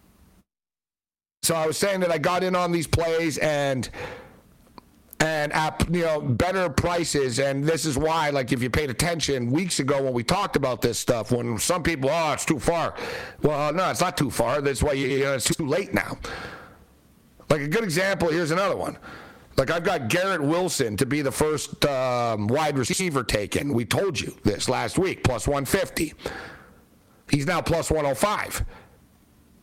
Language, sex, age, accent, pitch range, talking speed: English, male, 60-79, American, 130-165 Hz, 180 wpm